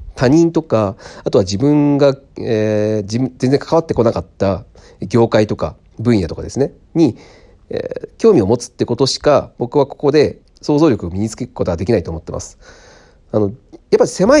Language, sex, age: Japanese, male, 40-59